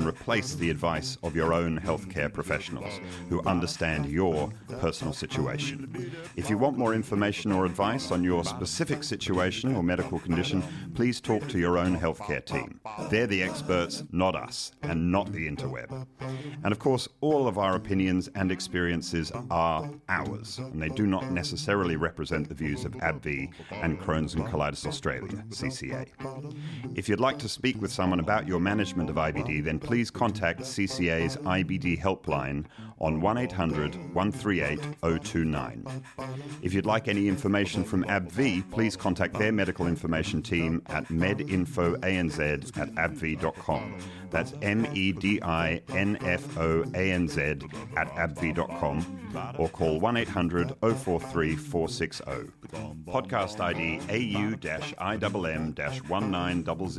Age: 40-59